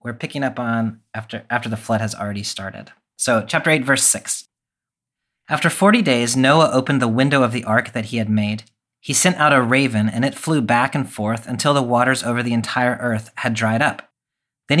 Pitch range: 110-135 Hz